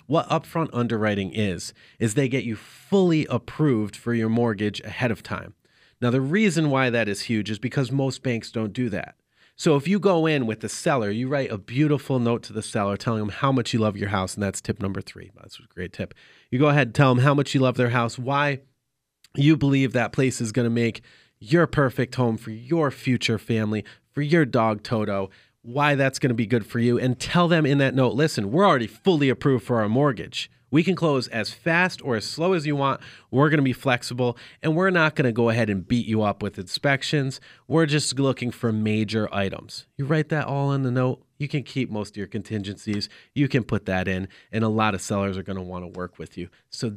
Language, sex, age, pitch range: English, male, 30-49, 105-140 Hz